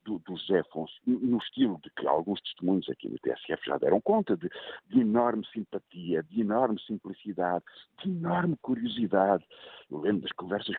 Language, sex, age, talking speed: Portuguese, male, 60-79, 165 wpm